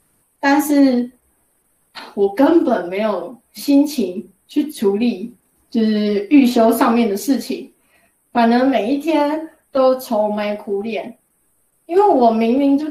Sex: female